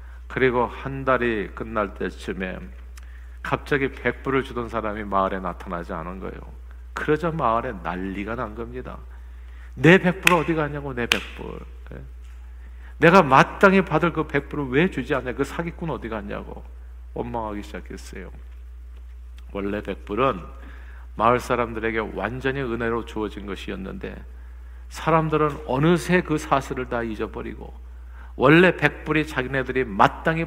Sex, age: male, 50-69